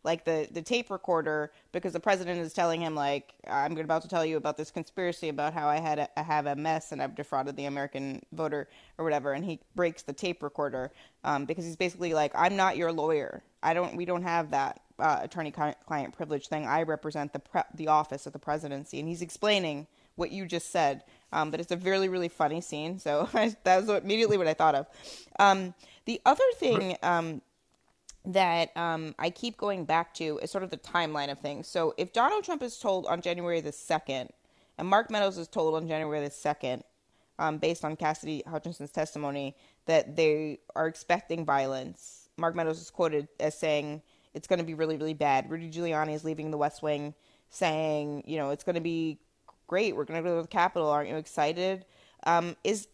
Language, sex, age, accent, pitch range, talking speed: English, female, 20-39, American, 150-175 Hz, 210 wpm